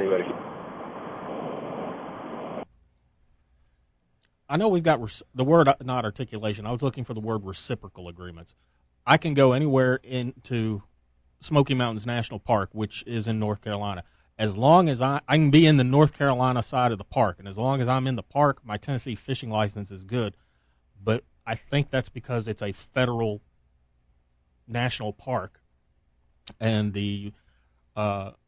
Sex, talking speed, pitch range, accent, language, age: male, 150 wpm, 90-115 Hz, American, English, 30-49